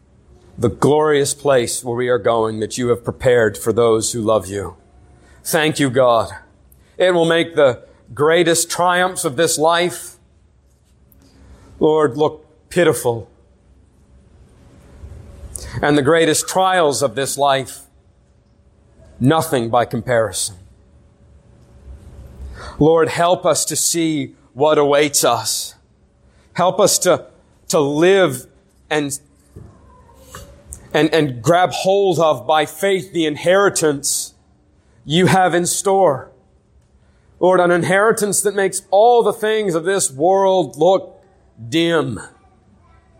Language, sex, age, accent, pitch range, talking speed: English, male, 40-59, American, 110-175 Hz, 115 wpm